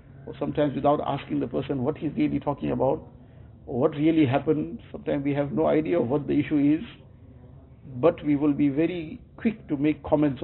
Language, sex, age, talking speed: English, male, 60-79, 195 wpm